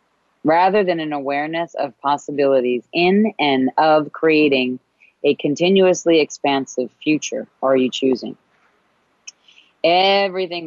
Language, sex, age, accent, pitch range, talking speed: English, female, 30-49, American, 130-160 Hz, 100 wpm